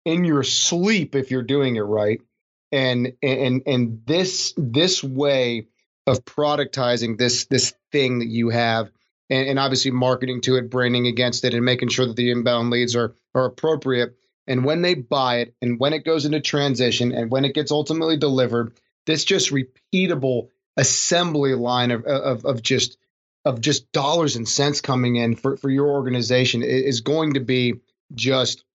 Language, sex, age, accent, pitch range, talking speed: English, male, 30-49, American, 125-150 Hz, 175 wpm